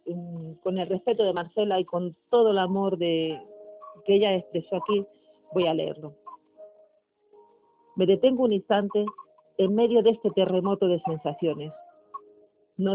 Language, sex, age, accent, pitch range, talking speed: Spanish, female, 50-69, Spanish, 180-260 Hz, 140 wpm